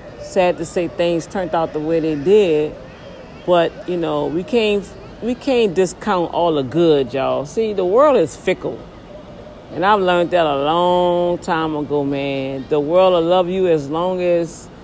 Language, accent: English, American